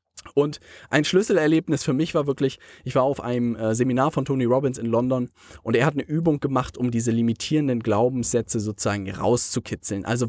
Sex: male